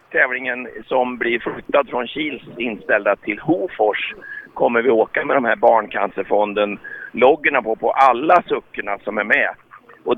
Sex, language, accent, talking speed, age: male, Swedish, native, 140 wpm, 50-69